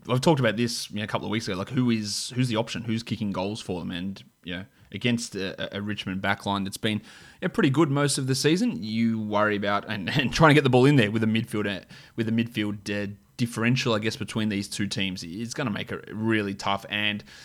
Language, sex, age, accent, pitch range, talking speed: English, male, 20-39, Australian, 100-125 Hz, 255 wpm